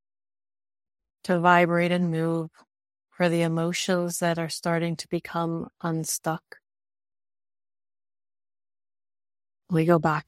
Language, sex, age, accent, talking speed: English, female, 30-49, American, 95 wpm